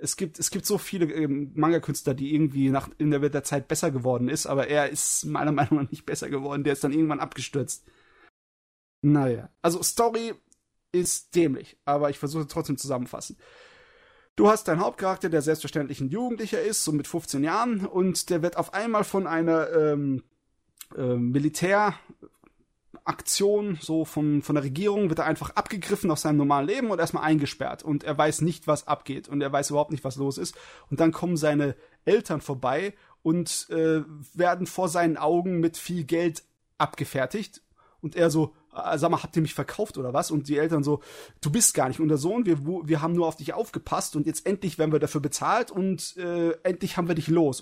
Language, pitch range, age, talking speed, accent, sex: German, 145-175 Hz, 30-49, 195 wpm, German, male